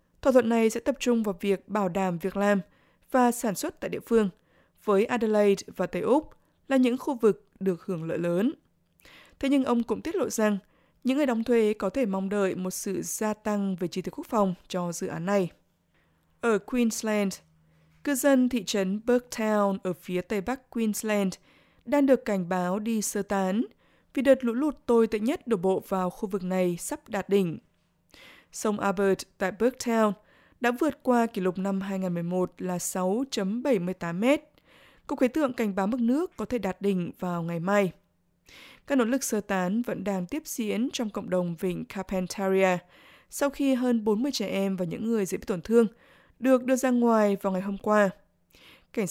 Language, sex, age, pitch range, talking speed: Vietnamese, female, 20-39, 190-245 Hz, 195 wpm